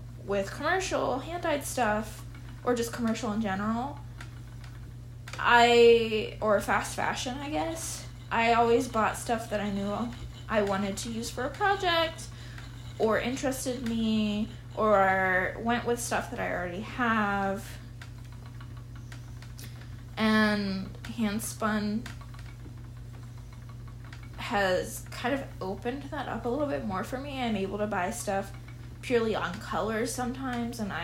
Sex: female